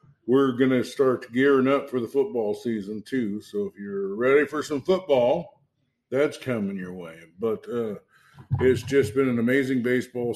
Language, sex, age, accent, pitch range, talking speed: English, male, 50-69, American, 110-125 Hz, 175 wpm